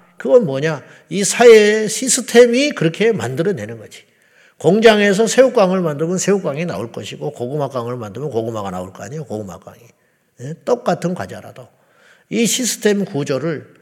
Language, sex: Korean, male